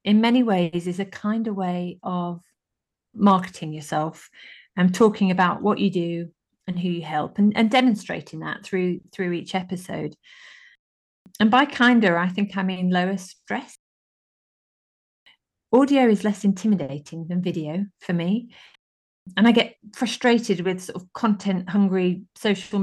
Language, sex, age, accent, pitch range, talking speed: English, female, 40-59, British, 175-210 Hz, 140 wpm